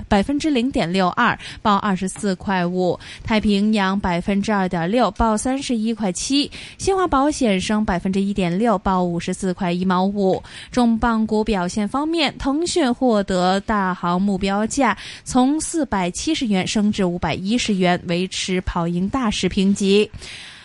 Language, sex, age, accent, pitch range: Chinese, female, 20-39, native, 185-235 Hz